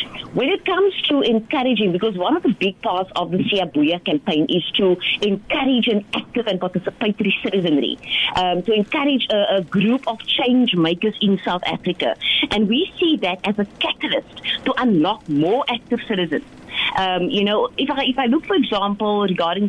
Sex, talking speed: female, 175 wpm